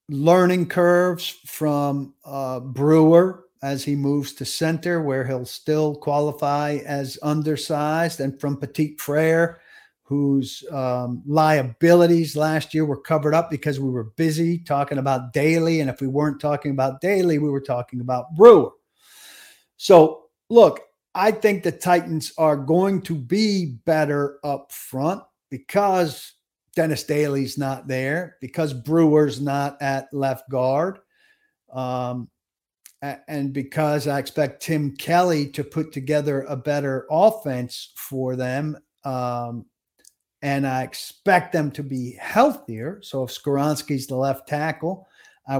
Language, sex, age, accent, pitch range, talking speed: English, male, 50-69, American, 135-165 Hz, 135 wpm